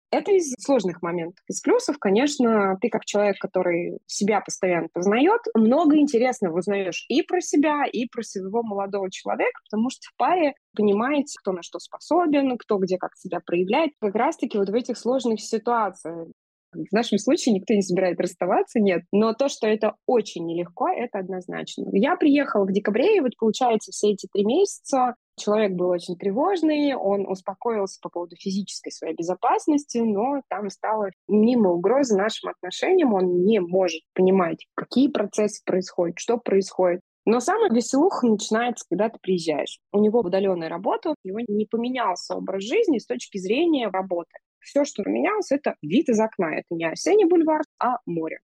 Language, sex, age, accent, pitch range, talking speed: Russian, female, 20-39, native, 185-255 Hz, 165 wpm